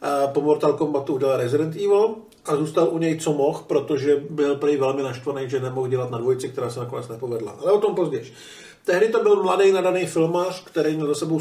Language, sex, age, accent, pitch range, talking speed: Czech, male, 50-69, native, 145-165 Hz, 210 wpm